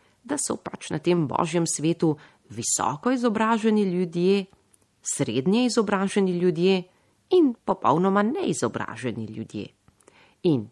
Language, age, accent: Italian, 40-59, native